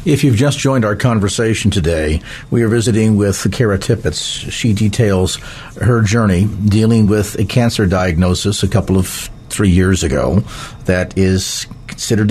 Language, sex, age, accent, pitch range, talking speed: English, male, 50-69, American, 95-115 Hz, 150 wpm